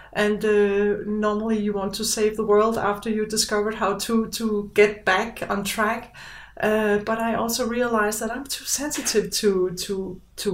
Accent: Danish